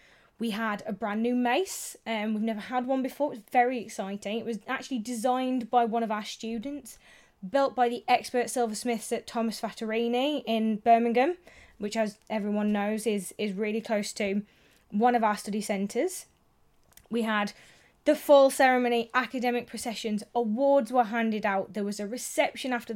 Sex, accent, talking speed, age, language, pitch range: female, British, 170 wpm, 20-39, English, 210-265 Hz